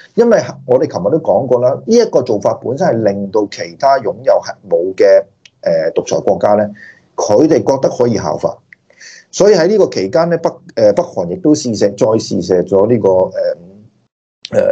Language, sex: Chinese, male